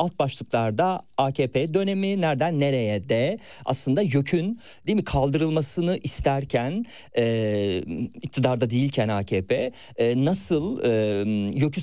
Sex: male